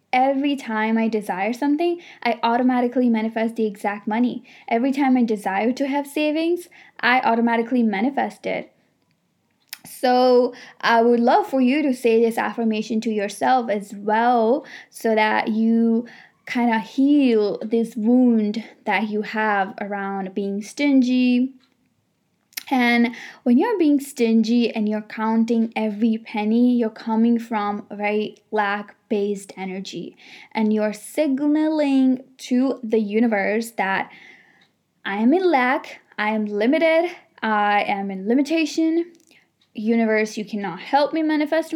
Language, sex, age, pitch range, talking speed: English, female, 10-29, 220-270 Hz, 130 wpm